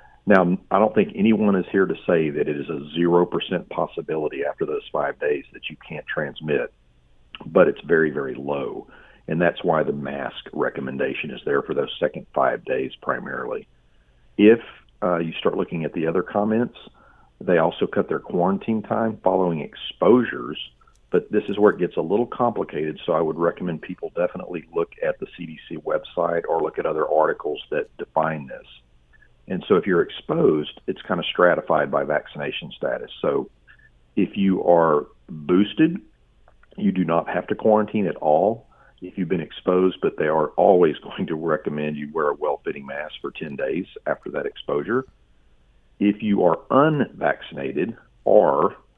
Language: English